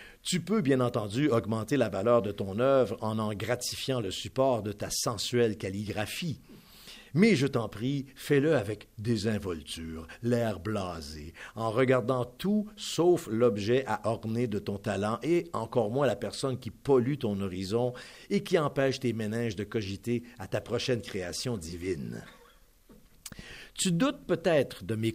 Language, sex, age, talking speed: French, male, 50-69, 155 wpm